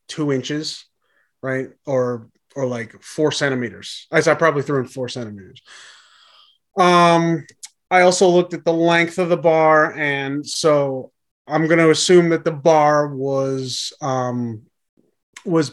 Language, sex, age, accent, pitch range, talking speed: English, male, 30-49, American, 135-175 Hz, 135 wpm